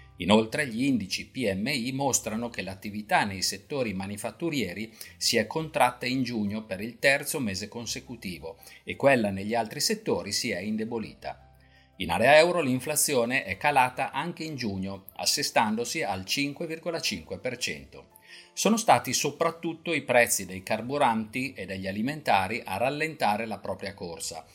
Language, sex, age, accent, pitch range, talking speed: Italian, male, 50-69, native, 100-150 Hz, 135 wpm